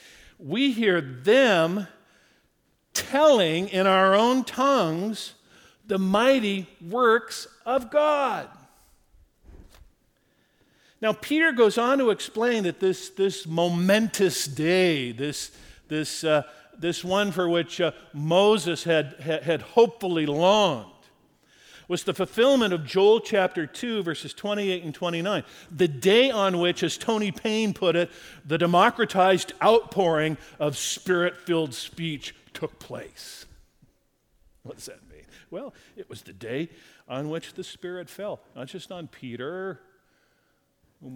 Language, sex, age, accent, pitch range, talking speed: English, male, 50-69, American, 155-215 Hz, 120 wpm